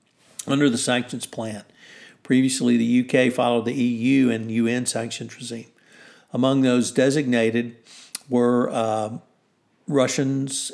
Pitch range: 120-140 Hz